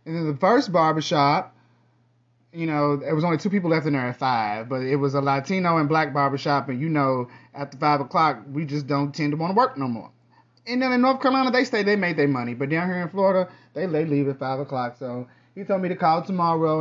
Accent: American